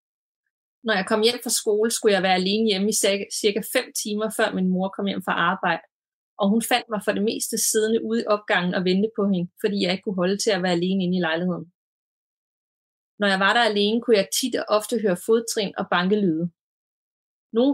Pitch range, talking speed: 195-230 Hz, 215 wpm